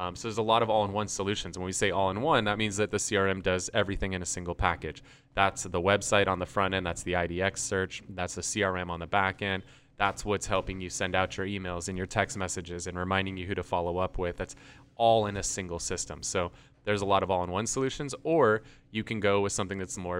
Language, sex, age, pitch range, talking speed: English, male, 30-49, 90-110 Hz, 245 wpm